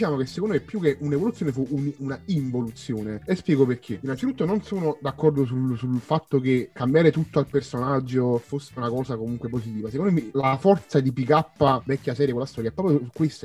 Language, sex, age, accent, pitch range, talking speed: Italian, male, 30-49, native, 125-150 Hz, 200 wpm